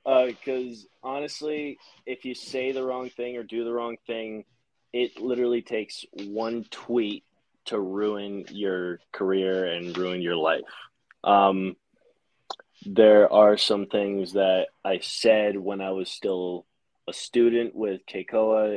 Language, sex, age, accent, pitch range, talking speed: English, male, 20-39, American, 95-115 Hz, 140 wpm